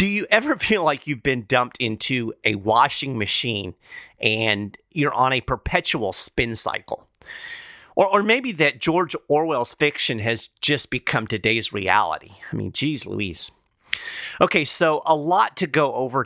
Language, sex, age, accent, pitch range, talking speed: English, male, 40-59, American, 115-155 Hz, 155 wpm